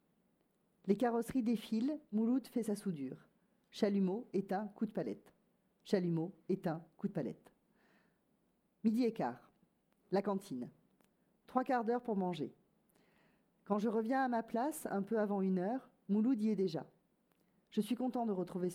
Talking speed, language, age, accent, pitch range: 150 wpm, French, 40-59, French, 185-225 Hz